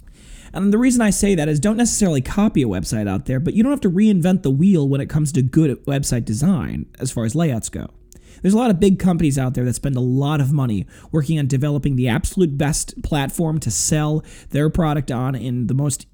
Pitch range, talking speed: 140-185 Hz, 235 wpm